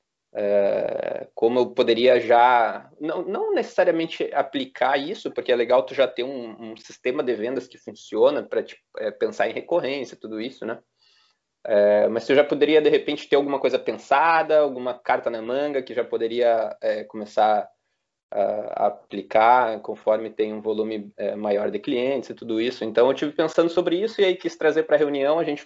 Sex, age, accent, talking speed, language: male, 20-39, Brazilian, 185 wpm, Portuguese